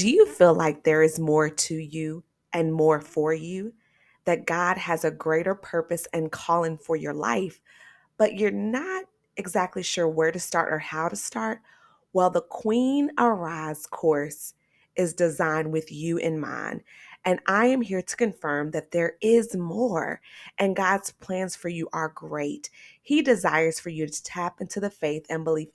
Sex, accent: female, American